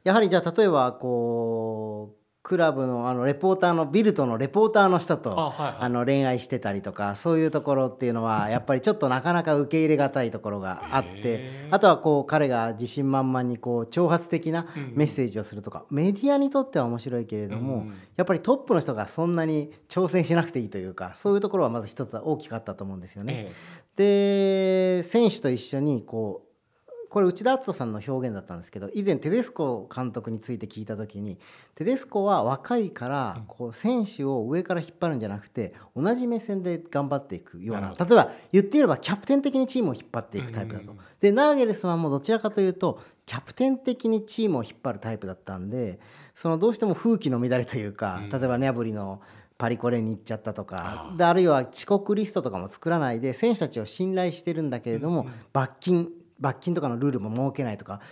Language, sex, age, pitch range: Japanese, male, 40-59, 115-185 Hz